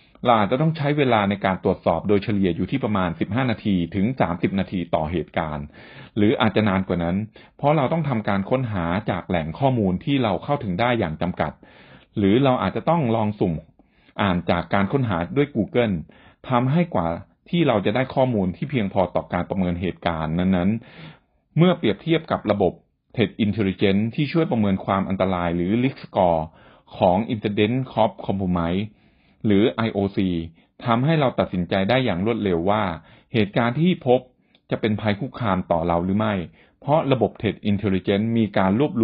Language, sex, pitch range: Thai, male, 90-120 Hz